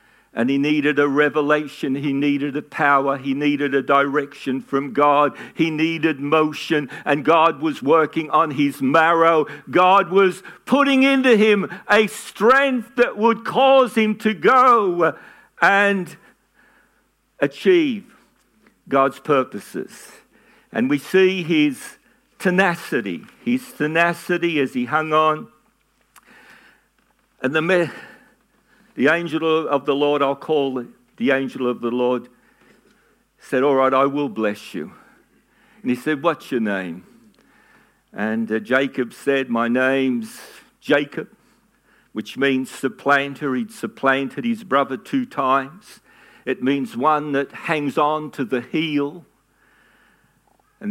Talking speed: 125 wpm